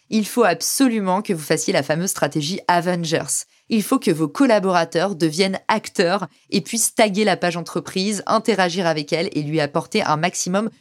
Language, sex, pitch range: French, female, 170-215 Hz